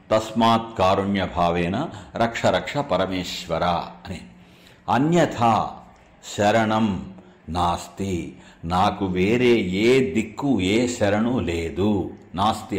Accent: native